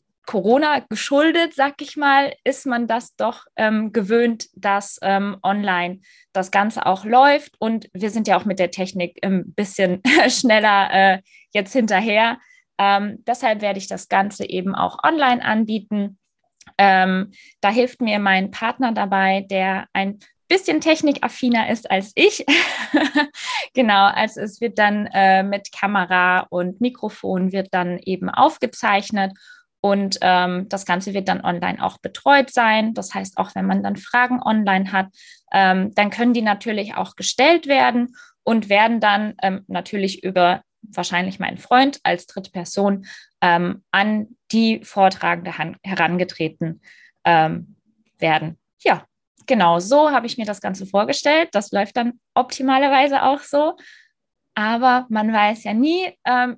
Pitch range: 190-250 Hz